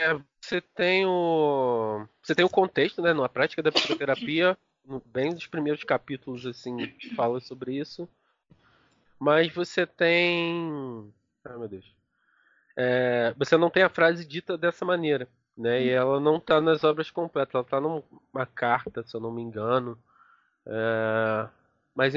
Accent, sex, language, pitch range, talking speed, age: Brazilian, male, Portuguese, 130-195 Hz, 145 wpm, 20-39